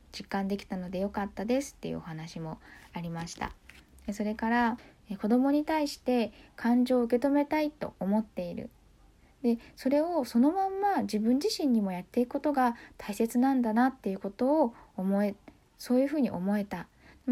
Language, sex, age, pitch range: Japanese, female, 20-39, 195-255 Hz